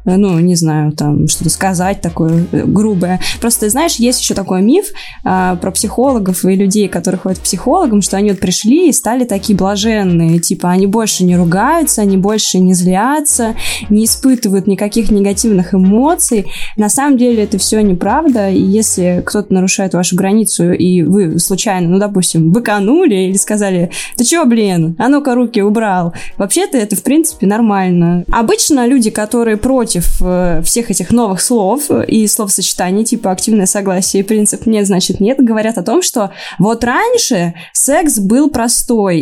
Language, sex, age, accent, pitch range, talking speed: Russian, female, 20-39, native, 185-235 Hz, 160 wpm